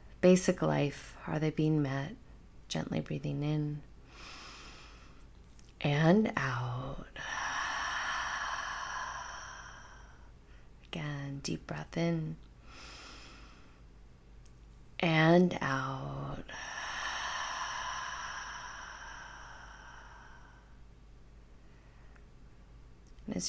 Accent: American